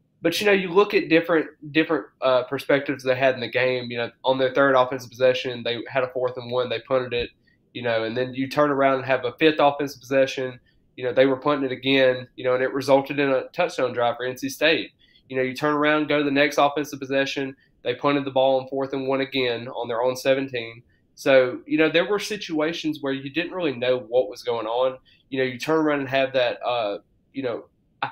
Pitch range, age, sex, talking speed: 125-150 Hz, 20-39, male, 245 wpm